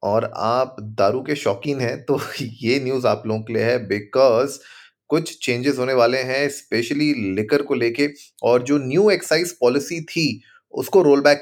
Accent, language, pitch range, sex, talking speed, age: native, Hindi, 115-150 Hz, male, 175 wpm, 30-49